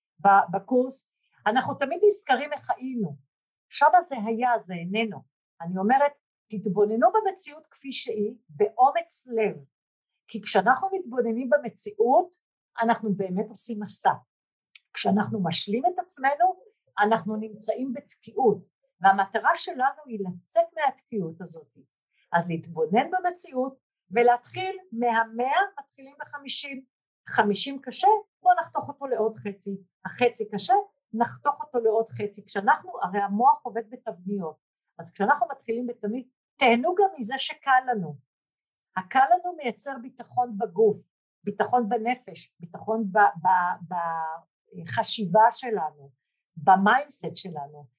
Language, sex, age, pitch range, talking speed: Hebrew, female, 50-69, 200-275 Hz, 115 wpm